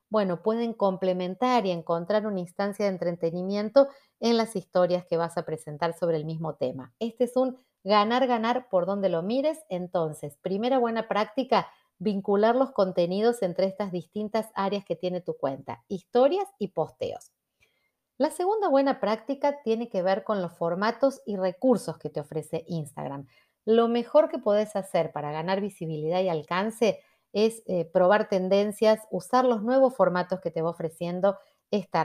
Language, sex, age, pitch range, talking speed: Spanish, female, 40-59, 175-230 Hz, 160 wpm